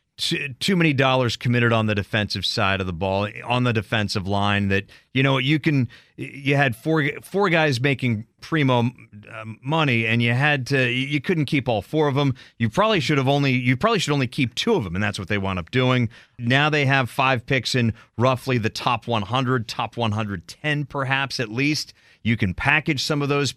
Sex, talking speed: male, 205 wpm